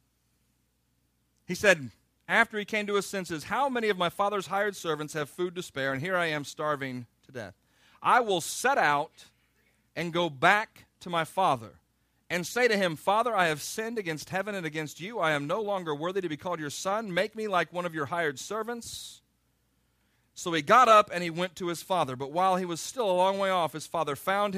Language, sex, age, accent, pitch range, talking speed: English, male, 40-59, American, 145-190 Hz, 215 wpm